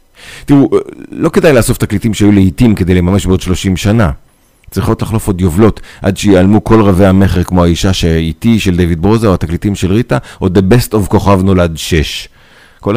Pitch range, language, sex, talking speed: 85-115 Hz, Hebrew, male, 180 wpm